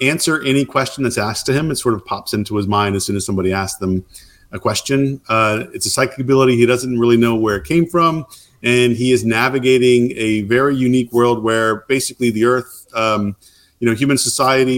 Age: 40-59